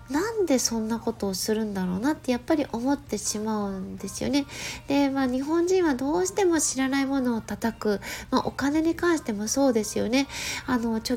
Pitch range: 215-280 Hz